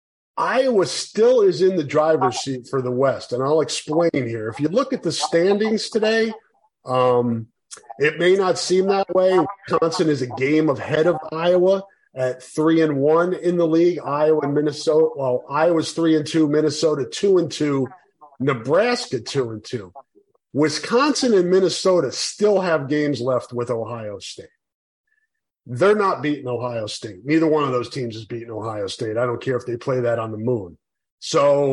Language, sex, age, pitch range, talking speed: English, male, 40-59, 125-180 Hz, 175 wpm